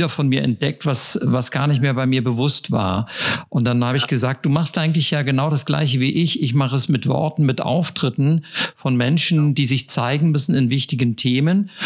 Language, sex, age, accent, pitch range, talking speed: German, male, 50-69, German, 130-165 Hz, 215 wpm